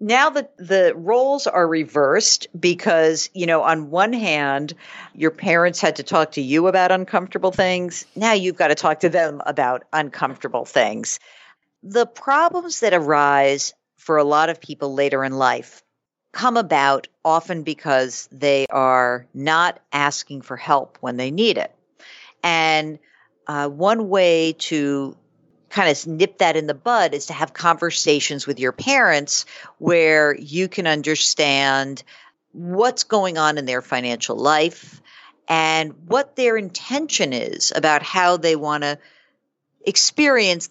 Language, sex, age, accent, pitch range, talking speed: English, female, 50-69, American, 145-180 Hz, 145 wpm